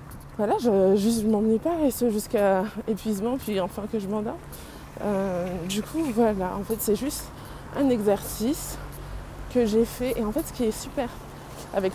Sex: female